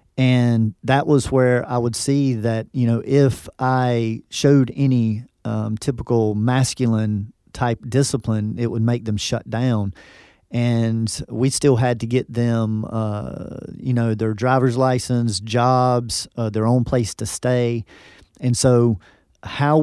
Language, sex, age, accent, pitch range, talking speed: English, male, 40-59, American, 110-130 Hz, 145 wpm